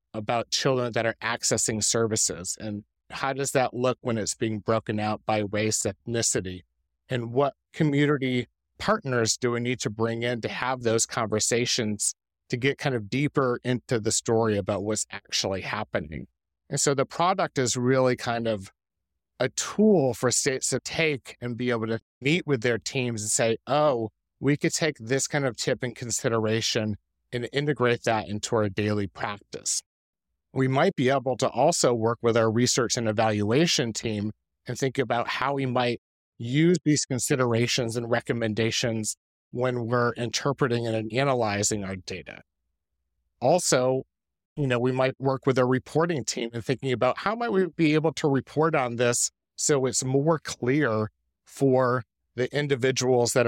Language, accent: English, American